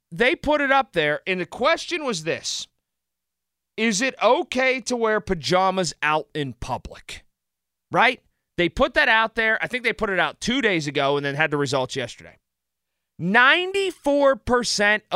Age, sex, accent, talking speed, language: 30-49, male, American, 160 wpm, English